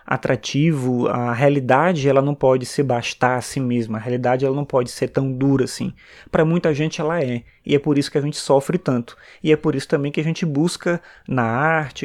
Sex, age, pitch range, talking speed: male, 20-39, 130-160 Hz, 225 wpm